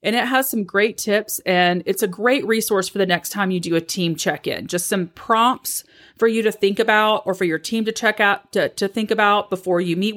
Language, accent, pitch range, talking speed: English, American, 165-215 Hz, 255 wpm